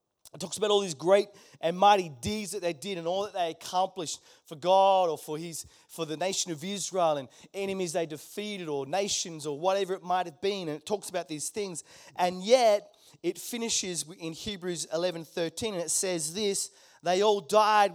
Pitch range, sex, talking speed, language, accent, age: 175-215 Hz, male, 195 wpm, English, Australian, 30-49